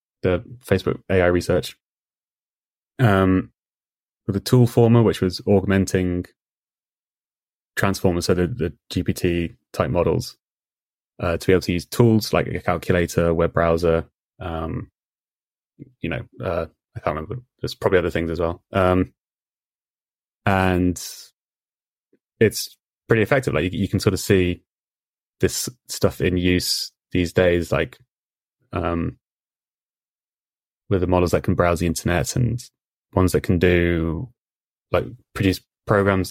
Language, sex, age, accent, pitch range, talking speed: English, male, 20-39, British, 85-100 Hz, 130 wpm